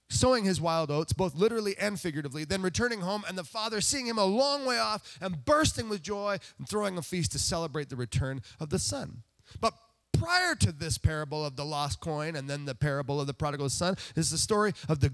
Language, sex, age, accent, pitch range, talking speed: English, male, 30-49, American, 110-180 Hz, 225 wpm